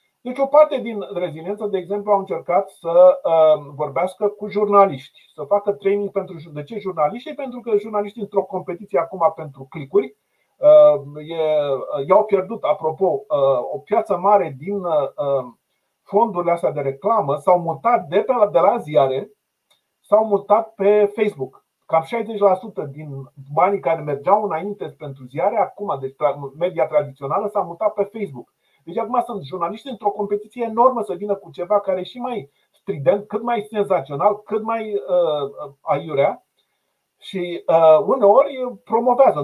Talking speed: 145 wpm